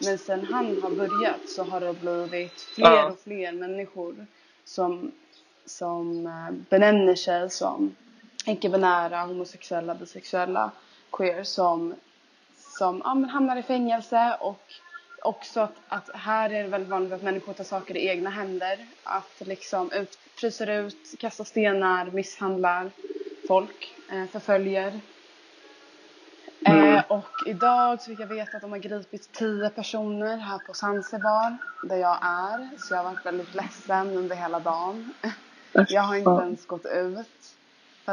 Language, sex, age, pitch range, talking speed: Swedish, female, 20-39, 180-235 Hz, 135 wpm